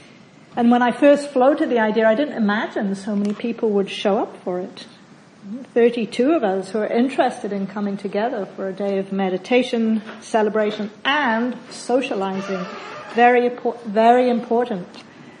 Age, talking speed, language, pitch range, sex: 50-69, 150 wpm, English, 200-240 Hz, female